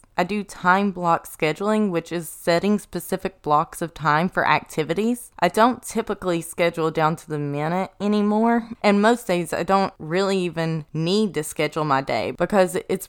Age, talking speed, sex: 20-39, 170 wpm, female